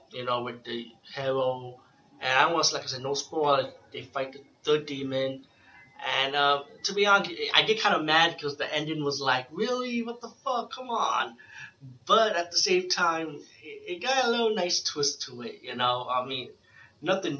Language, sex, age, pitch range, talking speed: English, male, 20-39, 130-165 Hz, 200 wpm